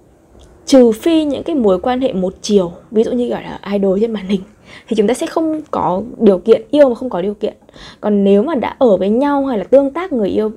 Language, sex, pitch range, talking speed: Vietnamese, female, 195-260 Hz, 255 wpm